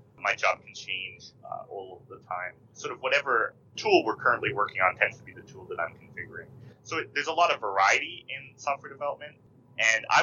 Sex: male